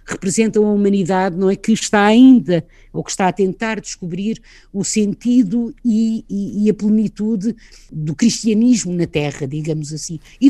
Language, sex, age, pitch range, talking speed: Portuguese, female, 50-69, 175-225 Hz, 160 wpm